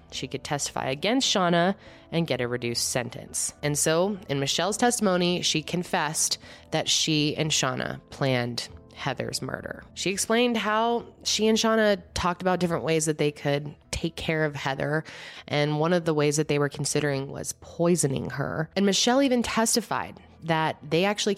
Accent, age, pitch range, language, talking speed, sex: American, 20-39, 135-185 Hz, English, 170 wpm, female